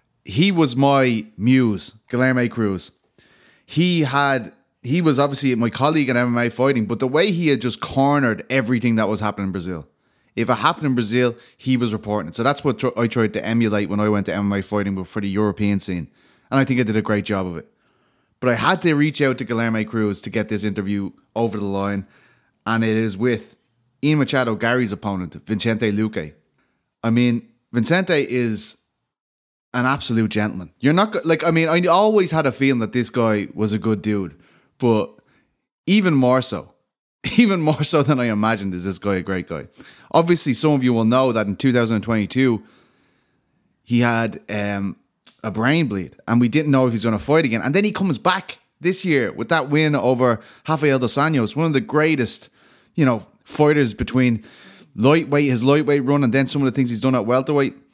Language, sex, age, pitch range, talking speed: English, male, 20-39, 110-140 Hz, 200 wpm